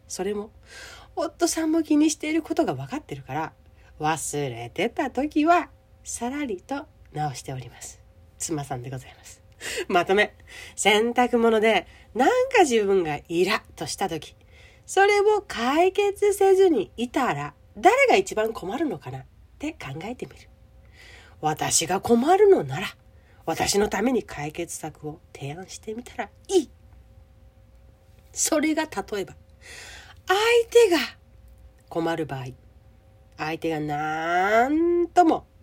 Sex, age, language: female, 40-59, Japanese